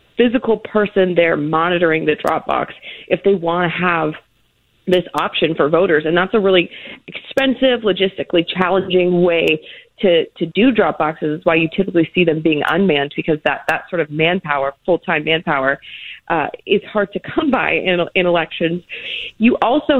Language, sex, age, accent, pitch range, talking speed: English, female, 30-49, American, 170-215 Hz, 165 wpm